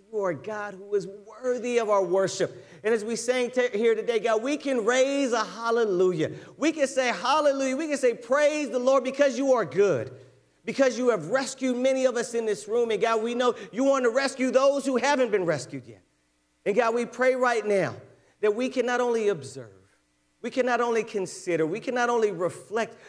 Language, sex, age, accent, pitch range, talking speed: English, male, 40-59, American, 175-240 Hz, 215 wpm